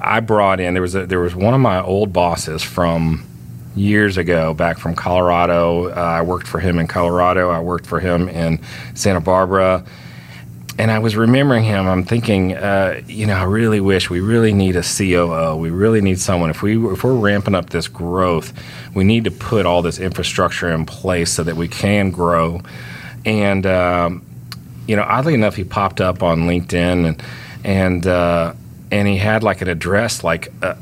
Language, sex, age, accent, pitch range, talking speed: English, male, 40-59, American, 85-105 Hz, 190 wpm